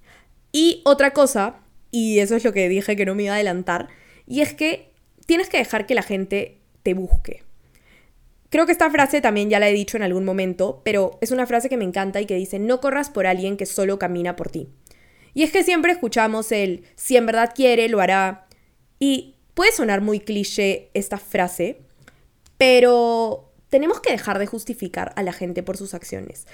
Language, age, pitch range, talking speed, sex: Spanish, 10-29, 190-255 Hz, 200 wpm, female